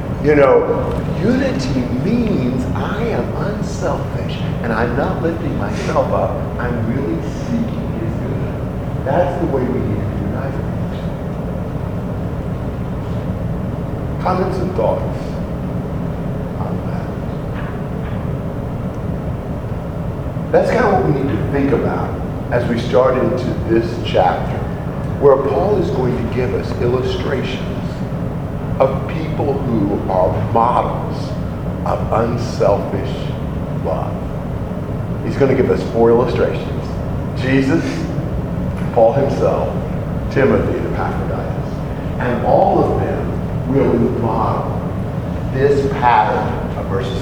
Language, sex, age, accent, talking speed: English, male, 50-69, American, 105 wpm